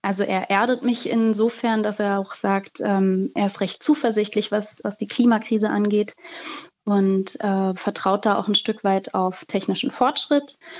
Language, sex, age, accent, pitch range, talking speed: German, female, 20-39, German, 195-240 Hz, 165 wpm